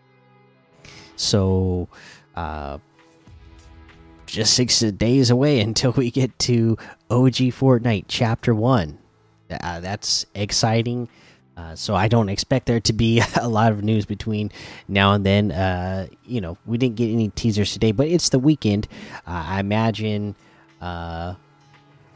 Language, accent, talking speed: English, American, 135 wpm